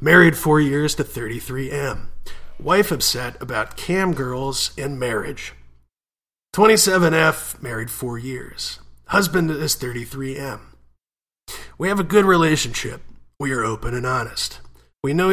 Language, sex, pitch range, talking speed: English, male, 120-160 Hz, 120 wpm